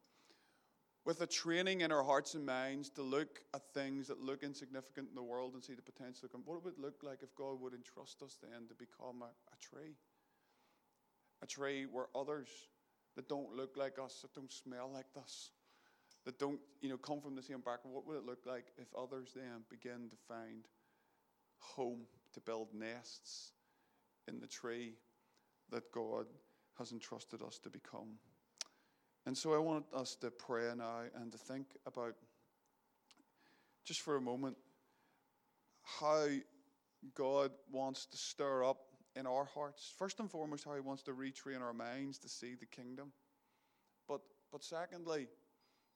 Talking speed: 165 wpm